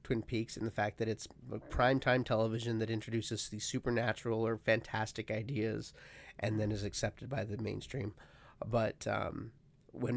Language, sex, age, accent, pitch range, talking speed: English, male, 30-49, American, 110-125 Hz, 155 wpm